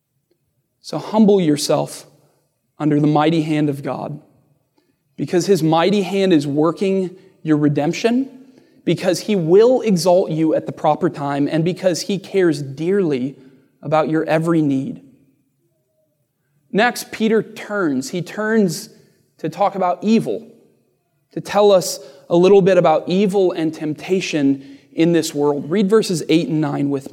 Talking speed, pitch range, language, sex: 140 wpm, 150-195 Hz, English, male